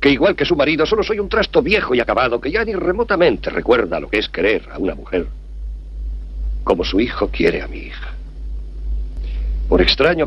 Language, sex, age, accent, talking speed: Spanish, male, 50-69, Spanish, 195 wpm